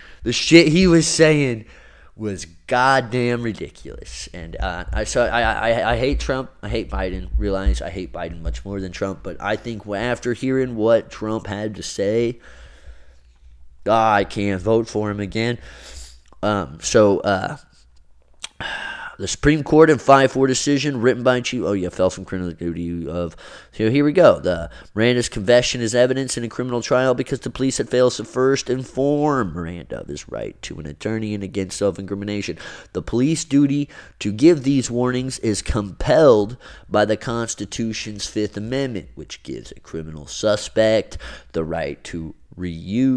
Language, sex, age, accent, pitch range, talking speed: English, male, 20-39, American, 95-130 Hz, 165 wpm